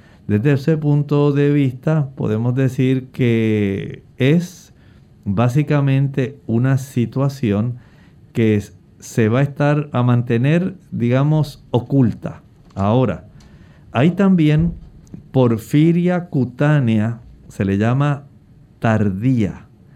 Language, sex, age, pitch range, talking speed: Spanish, male, 50-69, 115-155 Hz, 90 wpm